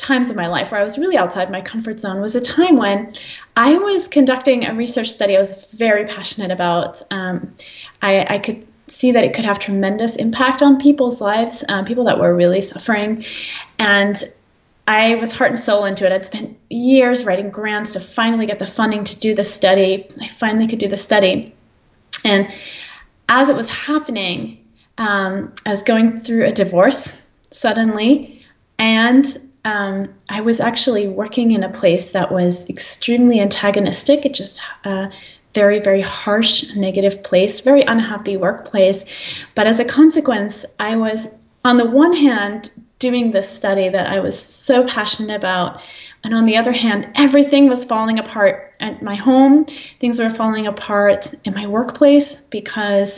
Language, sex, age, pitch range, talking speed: English, female, 20-39, 200-245 Hz, 170 wpm